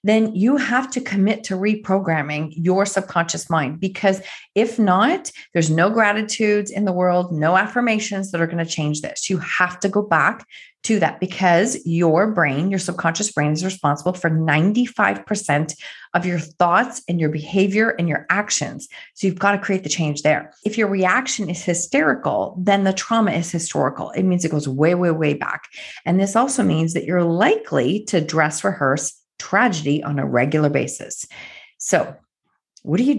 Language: English